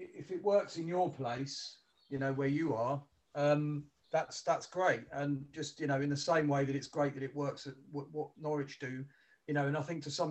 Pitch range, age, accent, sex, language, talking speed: 140-160 Hz, 40-59, British, male, English, 240 wpm